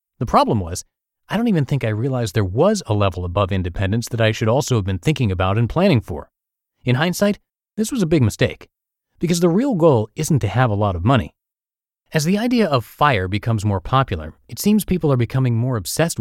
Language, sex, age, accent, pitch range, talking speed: English, male, 30-49, American, 105-155 Hz, 220 wpm